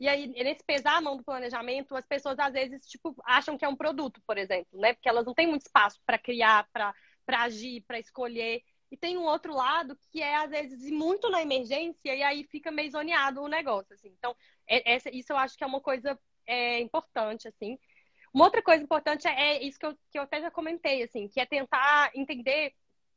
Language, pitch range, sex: Portuguese, 245-305 Hz, female